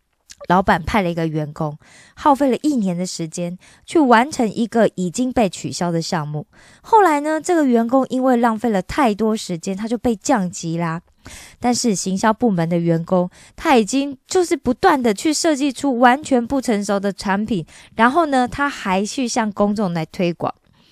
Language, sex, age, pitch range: Korean, female, 20-39, 180-255 Hz